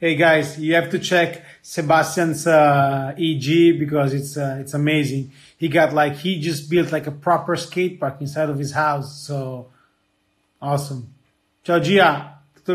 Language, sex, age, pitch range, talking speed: English, male, 30-49, 140-170 Hz, 160 wpm